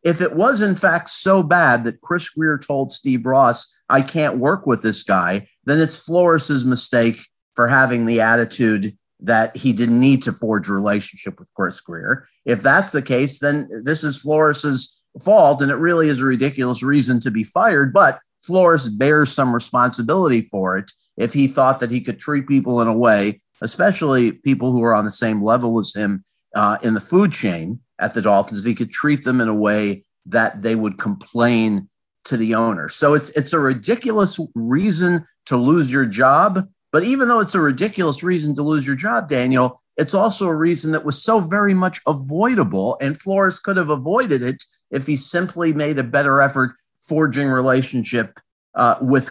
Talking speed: 190 wpm